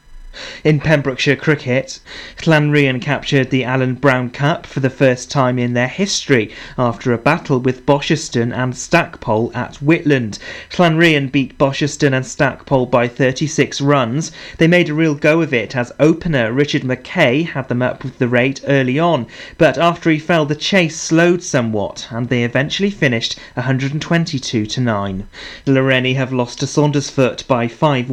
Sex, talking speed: male, 155 wpm